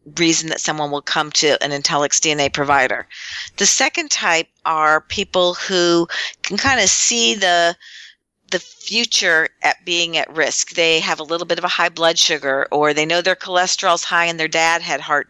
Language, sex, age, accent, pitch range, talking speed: English, female, 50-69, American, 160-195 Hz, 190 wpm